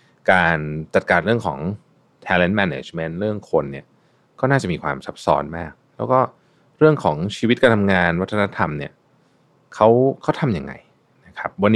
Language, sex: Thai, male